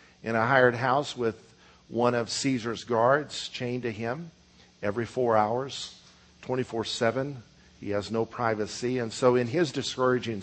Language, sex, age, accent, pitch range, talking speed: English, male, 50-69, American, 115-140 Hz, 145 wpm